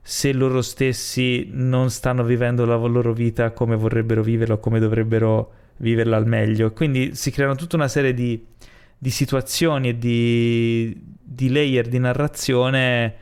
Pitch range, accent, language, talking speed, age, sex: 120-145 Hz, native, Italian, 150 wpm, 20-39, male